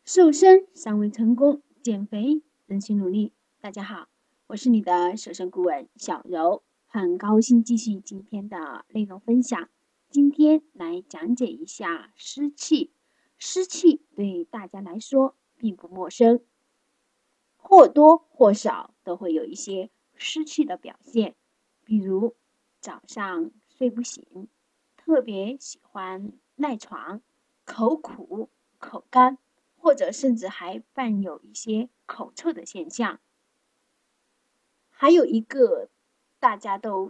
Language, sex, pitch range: Chinese, female, 210-305 Hz